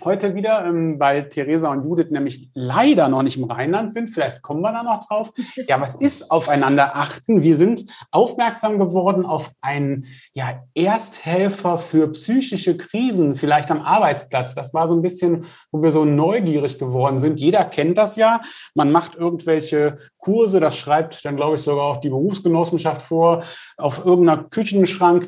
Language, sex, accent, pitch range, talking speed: German, male, German, 140-180 Hz, 165 wpm